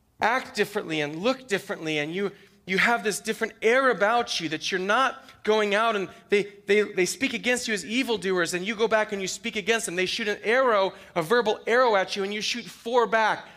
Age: 30-49